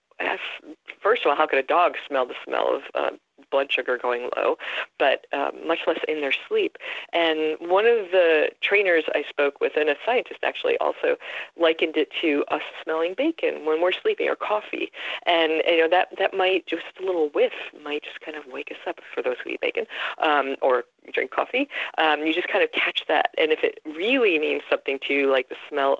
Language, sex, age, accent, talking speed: English, female, 40-59, American, 210 wpm